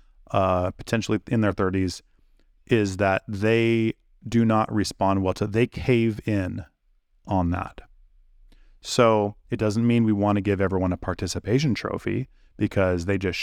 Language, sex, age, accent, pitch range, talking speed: English, male, 30-49, American, 95-115 Hz, 150 wpm